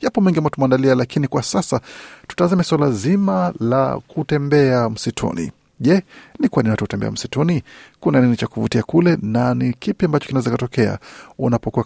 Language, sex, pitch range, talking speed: Swahili, male, 115-150 Hz, 150 wpm